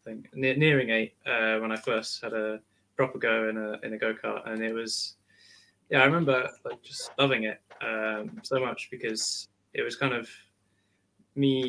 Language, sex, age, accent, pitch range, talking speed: English, male, 10-29, British, 110-130 Hz, 185 wpm